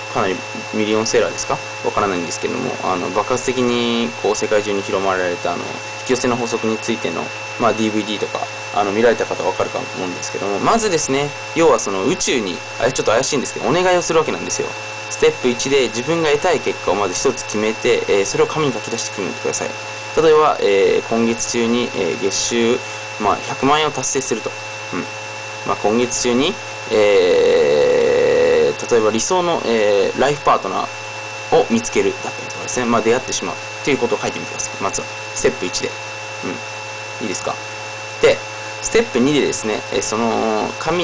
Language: Japanese